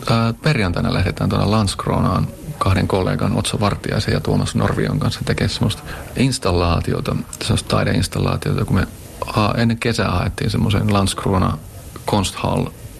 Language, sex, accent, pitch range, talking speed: Finnish, male, native, 95-115 Hz, 105 wpm